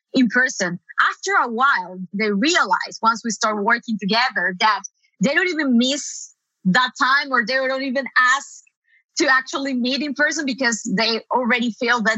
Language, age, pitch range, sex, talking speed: English, 20-39, 210-255 Hz, female, 170 wpm